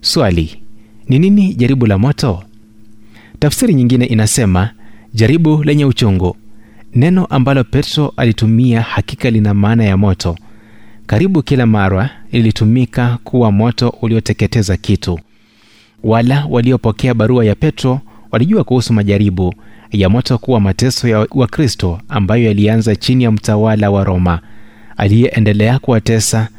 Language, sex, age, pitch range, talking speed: Swahili, male, 30-49, 105-125 Hz, 115 wpm